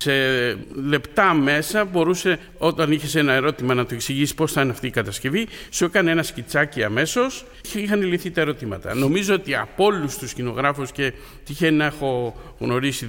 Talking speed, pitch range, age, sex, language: 175 wpm, 125-165 Hz, 50-69, male, Greek